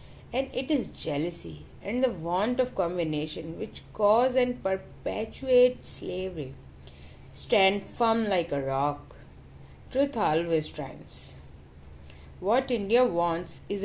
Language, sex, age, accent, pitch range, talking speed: Hindi, female, 30-49, native, 140-220 Hz, 115 wpm